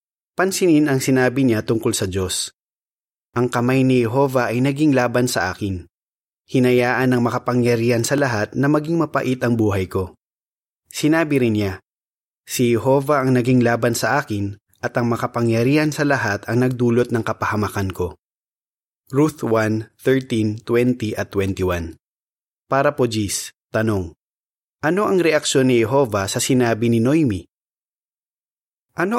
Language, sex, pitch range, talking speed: Filipino, male, 110-140 Hz, 140 wpm